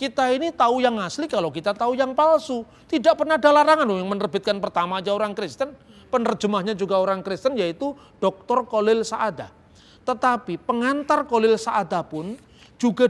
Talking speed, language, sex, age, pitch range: 160 wpm, Indonesian, male, 30-49, 180-240 Hz